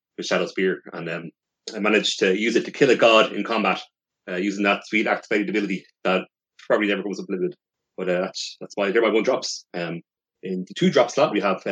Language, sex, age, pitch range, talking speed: English, male, 30-49, 90-120 Hz, 235 wpm